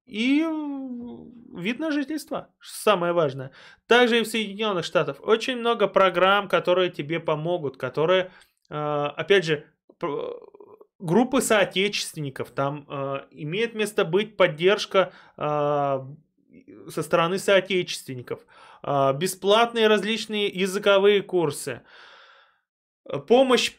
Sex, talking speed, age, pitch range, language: male, 90 wpm, 20-39, 160-230 Hz, Russian